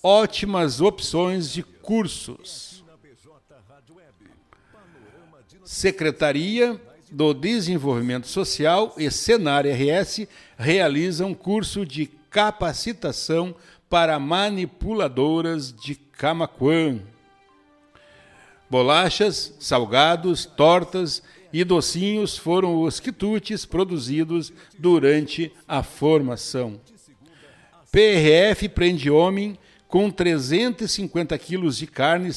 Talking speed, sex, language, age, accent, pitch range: 70 wpm, male, Portuguese, 60-79, Brazilian, 140-180 Hz